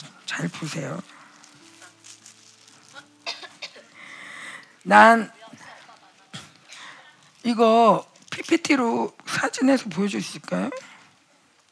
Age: 50-69